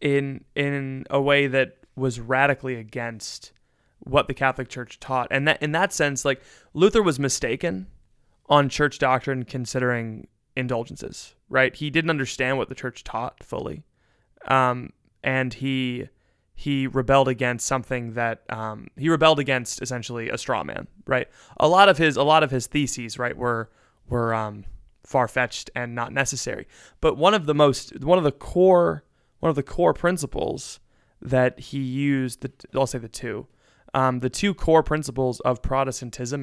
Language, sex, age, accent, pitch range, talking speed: English, male, 20-39, American, 120-140 Hz, 160 wpm